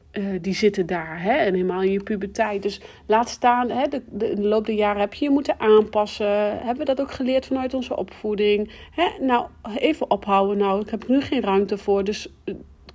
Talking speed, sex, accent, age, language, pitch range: 195 wpm, female, Dutch, 40-59, Dutch, 200-240 Hz